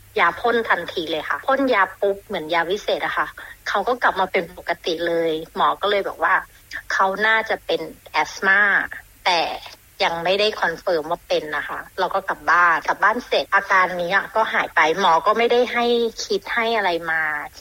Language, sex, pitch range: Thai, female, 175-220 Hz